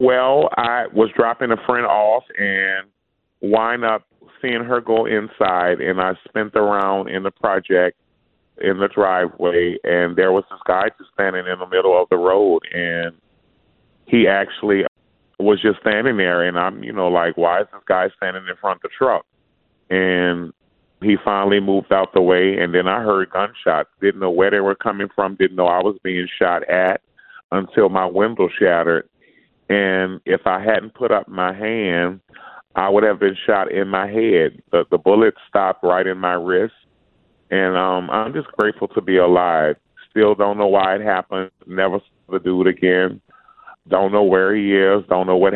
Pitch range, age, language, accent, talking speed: 90-100 Hz, 30-49, English, American, 185 wpm